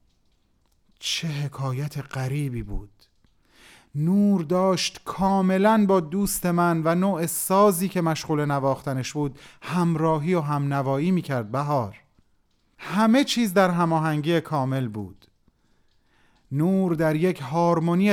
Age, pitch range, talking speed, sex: 30-49, 125-180 Hz, 110 wpm, male